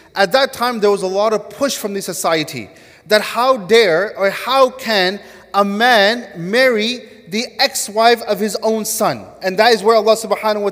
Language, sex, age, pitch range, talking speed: English, male, 30-49, 190-230 Hz, 190 wpm